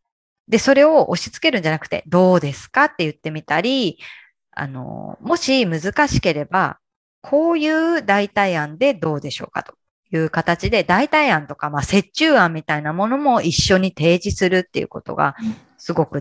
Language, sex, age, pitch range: Japanese, female, 20-39, 155-230 Hz